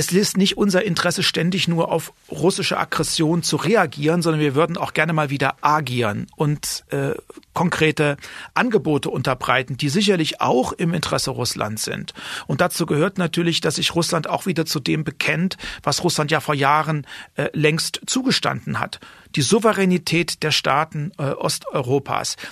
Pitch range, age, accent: 150-180 Hz, 40-59, German